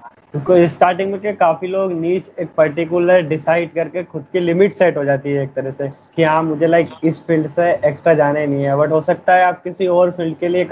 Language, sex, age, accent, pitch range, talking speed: Hindi, male, 20-39, native, 140-170 Hz, 145 wpm